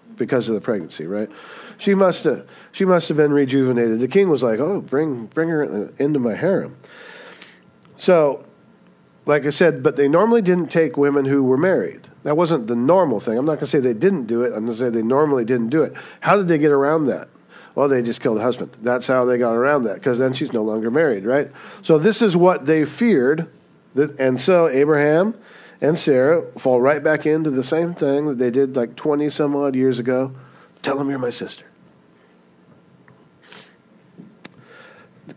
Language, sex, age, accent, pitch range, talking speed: English, male, 50-69, American, 120-155 Hz, 200 wpm